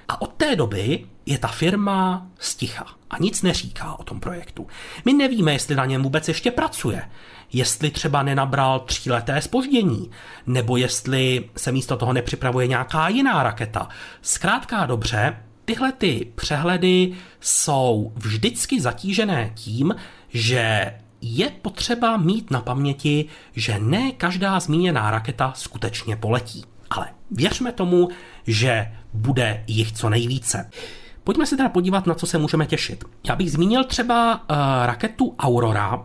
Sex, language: male, Czech